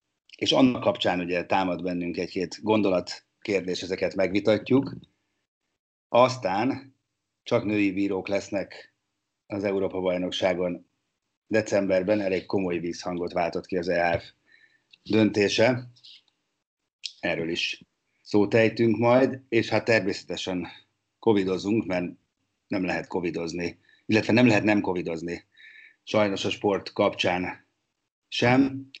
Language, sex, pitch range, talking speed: Hungarian, male, 90-115 Hz, 105 wpm